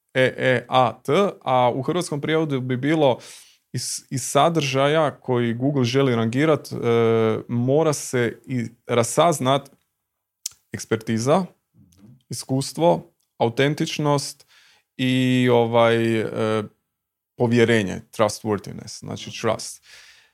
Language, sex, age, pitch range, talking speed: Croatian, male, 20-39, 115-145 Hz, 90 wpm